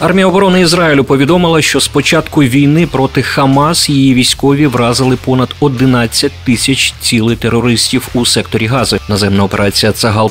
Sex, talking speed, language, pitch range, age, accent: male, 135 wpm, Ukrainian, 110-140 Hz, 30-49, native